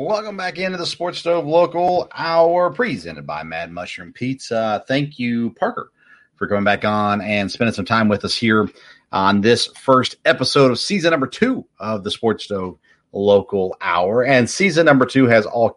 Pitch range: 105-140 Hz